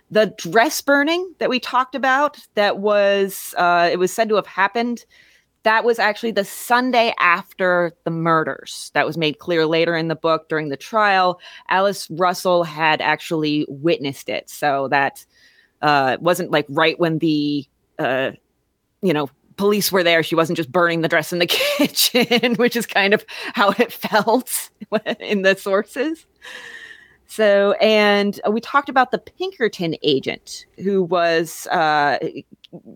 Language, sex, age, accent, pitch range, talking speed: English, female, 30-49, American, 170-220 Hz, 150 wpm